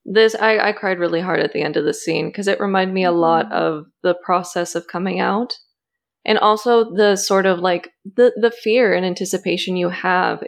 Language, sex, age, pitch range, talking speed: English, female, 20-39, 175-215 Hz, 210 wpm